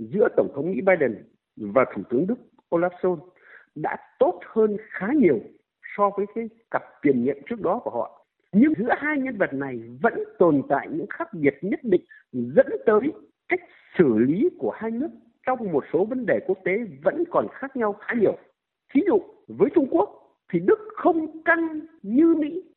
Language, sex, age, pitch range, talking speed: Vietnamese, male, 60-79, 210-320 Hz, 190 wpm